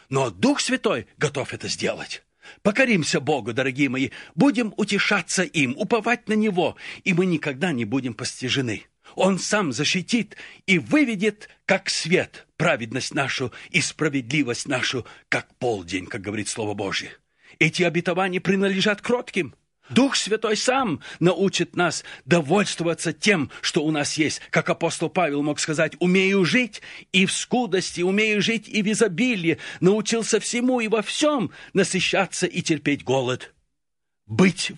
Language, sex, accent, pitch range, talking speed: Russian, male, native, 150-210 Hz, 140 wpm